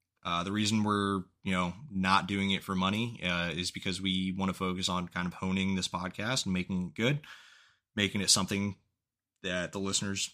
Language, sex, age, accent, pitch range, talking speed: English, male, 20-39, American, 90-110 Hz, 195 wpm